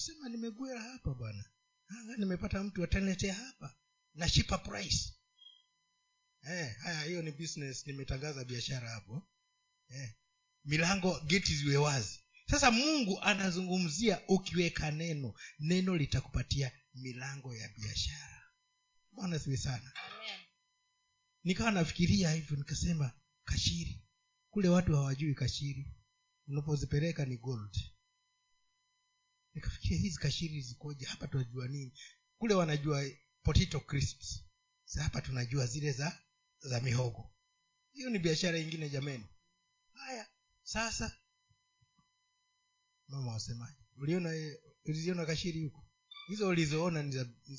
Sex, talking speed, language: male, 100 wpm, Swahili